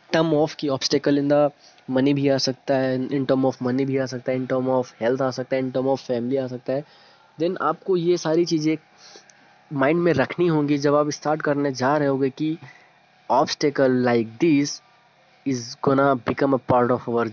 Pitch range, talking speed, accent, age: 130-150 Hz, 210 wpm, native, 20-39